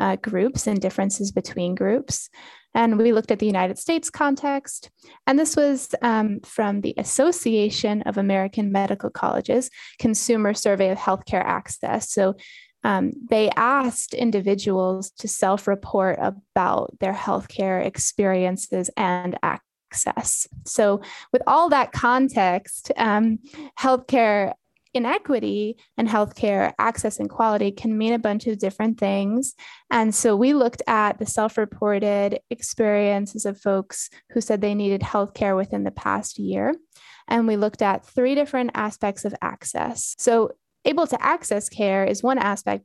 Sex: female